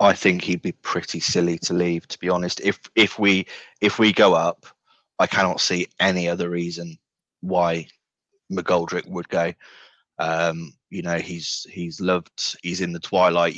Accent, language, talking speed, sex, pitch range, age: British, English, 170 wpm, male, 85-95 Hz, 20-39